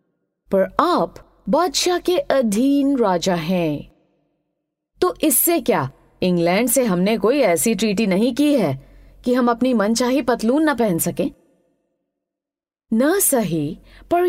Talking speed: 125 wpm